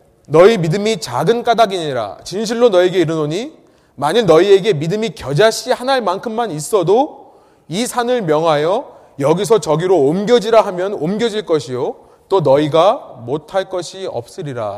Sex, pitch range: male, 165-235 Hz